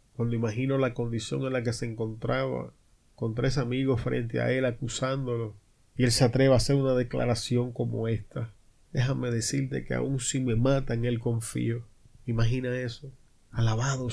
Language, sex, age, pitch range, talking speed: Spanish, male, 30-49, 115-135 Hz, 160 wpm